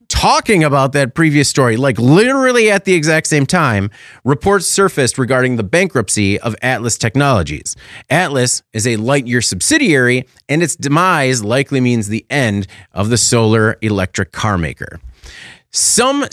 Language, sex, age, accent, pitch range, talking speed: English, male, 30-49, American, 110-160 Hz, 145 wpm